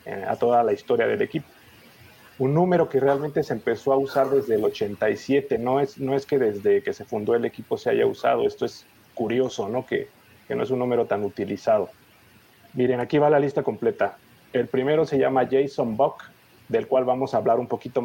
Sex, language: male, English